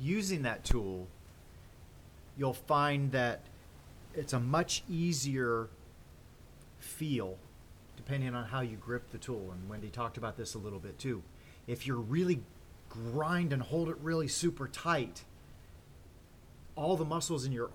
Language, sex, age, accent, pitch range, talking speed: English, male, 30-49, American, 95-135 Hz, 140 wpm